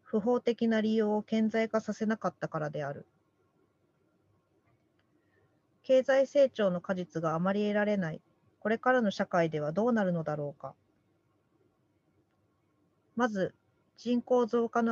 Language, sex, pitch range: Japanese, female, 170-230 Hz